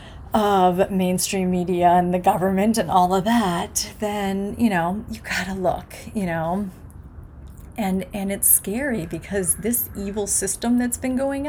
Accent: American